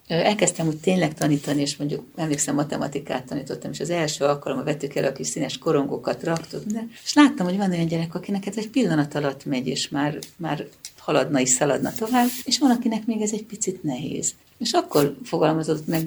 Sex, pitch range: female, 145-200 Hz